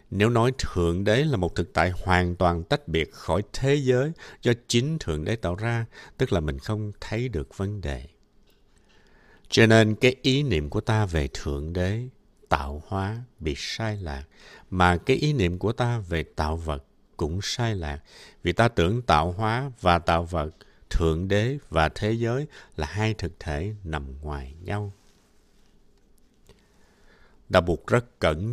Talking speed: 170 wpm